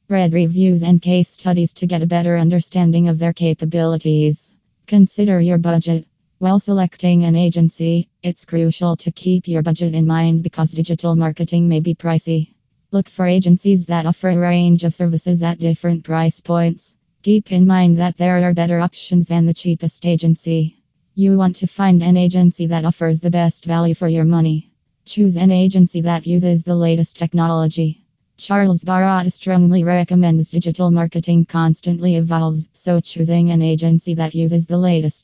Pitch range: 165-180 Hz